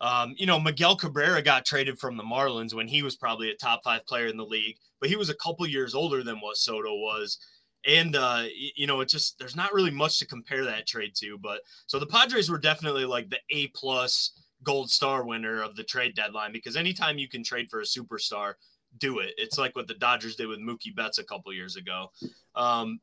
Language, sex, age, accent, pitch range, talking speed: English, male, 20-39, American, 125-165 Hz, 230 wpm